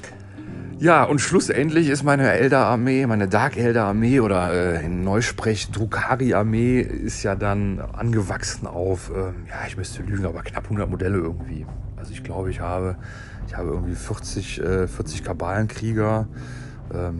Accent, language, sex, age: German, German, male, 30-49